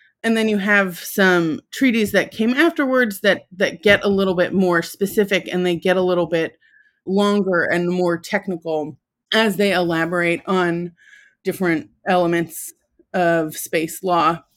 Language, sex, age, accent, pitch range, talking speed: English, female, 30-49, American, 180-220 Hz, 150 wpm